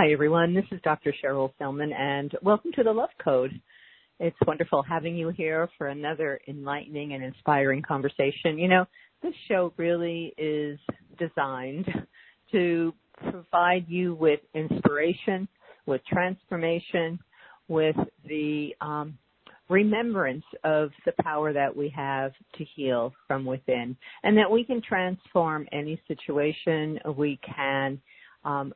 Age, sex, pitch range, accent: 50-69, female, 140-175 Hz, American